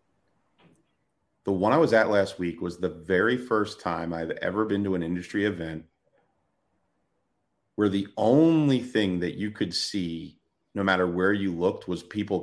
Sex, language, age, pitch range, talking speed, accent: male, English, 30-49, 90-110 Hz, 165 wpm, American